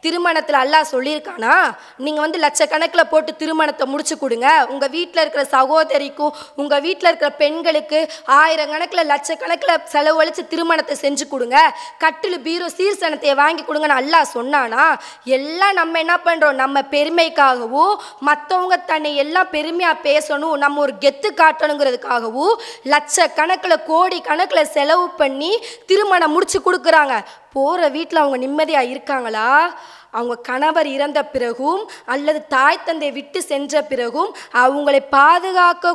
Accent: Indian